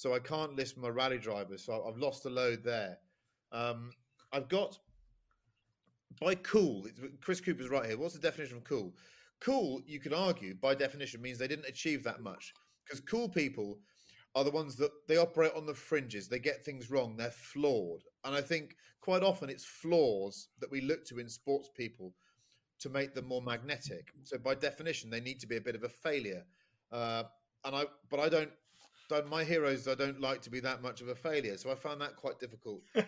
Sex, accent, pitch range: male, British, 125-160 Hz